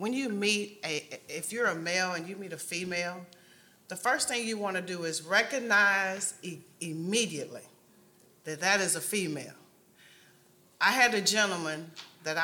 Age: 30-49